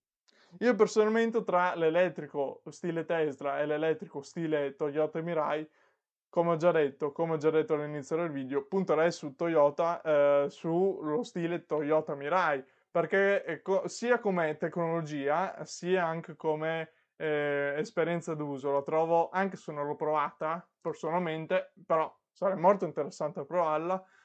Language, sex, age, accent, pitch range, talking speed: Italian, male, 20-39, native, 155-190 Hz, 130 wpm